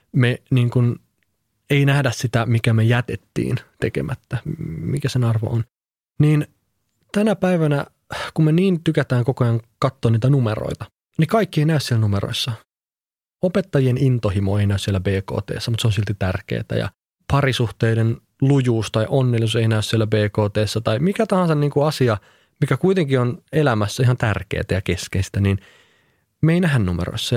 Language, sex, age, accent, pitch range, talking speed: Finnish, male, 30-49, native, 105-145 Hz, 155 wpm